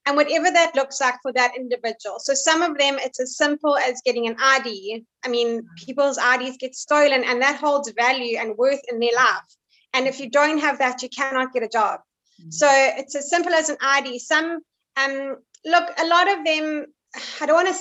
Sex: female